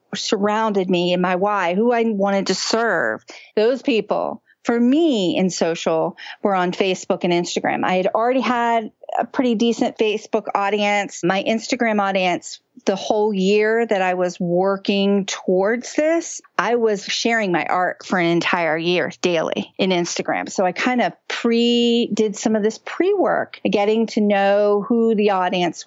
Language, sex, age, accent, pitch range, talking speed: English, female, 40-59, American, 185-230 Hz, 160 wpm